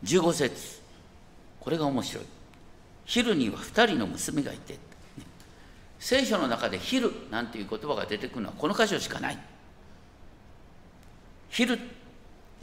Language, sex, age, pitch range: Japanese, male, 50-69, 145-235 Hz